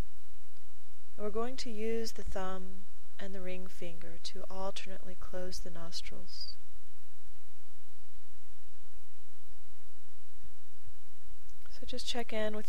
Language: English